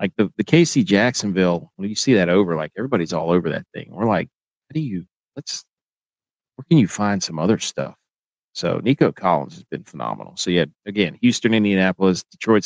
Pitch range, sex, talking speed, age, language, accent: 95-140 Hz, male, 195 wpm, 40-59, English, American